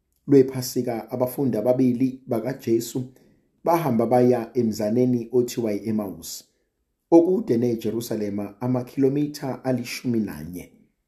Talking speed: 95 wpm